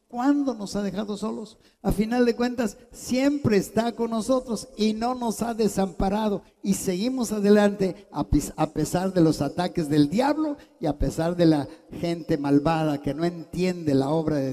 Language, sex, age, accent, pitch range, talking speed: Spanish, male, 50-69, Mexican, 160-225 Hz, 170 wpm